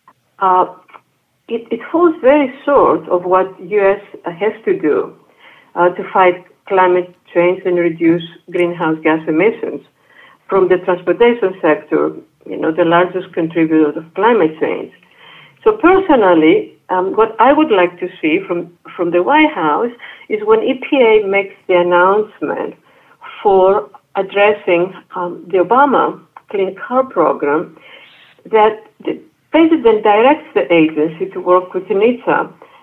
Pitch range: 180-275 Hz